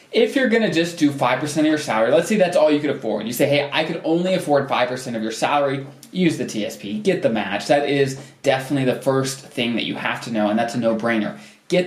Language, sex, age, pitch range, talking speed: English, male, 20-39, 125-160 Hz, 255 wpm